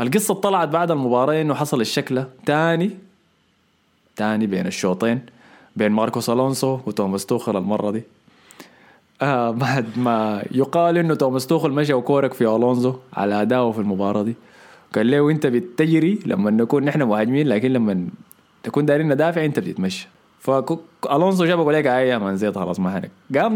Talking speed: 150 wpm